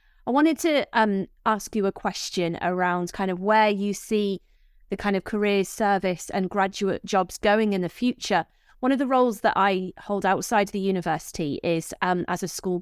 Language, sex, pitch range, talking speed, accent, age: English, female, 180-220 Hz, 195 wpm, British, 30-49